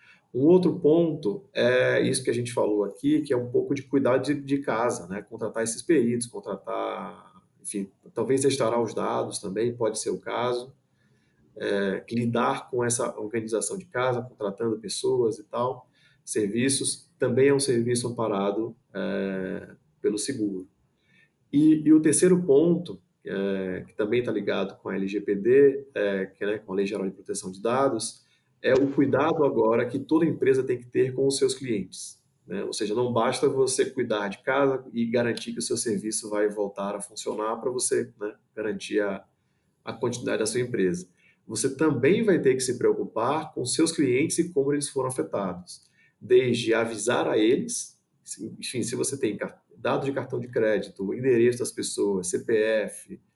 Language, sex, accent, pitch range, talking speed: Portuguese, male, Brazilian, 105-170 Hz, 170 wpm